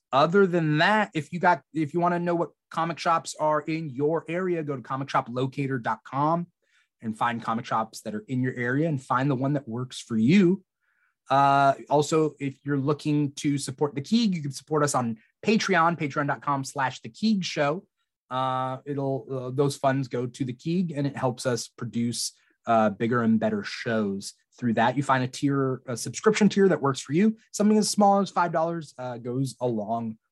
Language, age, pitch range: English, 30-49, 130-160 Hz